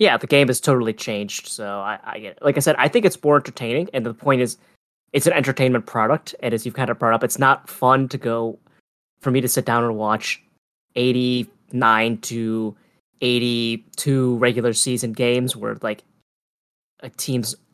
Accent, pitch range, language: American, 110-135 Hz, English